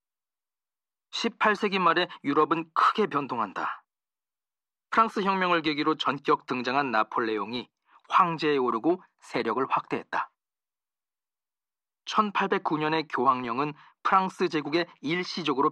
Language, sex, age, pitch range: Korean, male, 40-59, 145-190 Hz